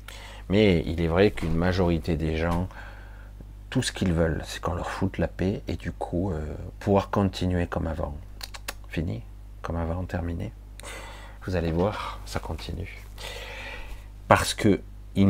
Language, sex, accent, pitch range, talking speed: French, male, French, 90-105 Hz, 150 wpm